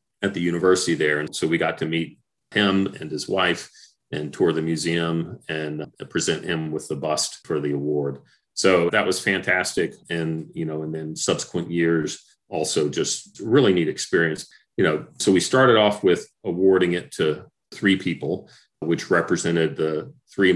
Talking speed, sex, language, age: 175 wpm, male, English, 40-59